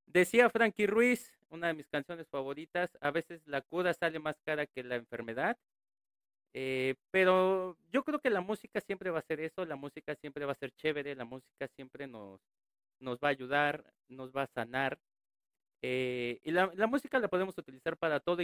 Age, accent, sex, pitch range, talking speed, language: 40-59, Mexican, male, 140-190 Hz, 190 wpm, Spanish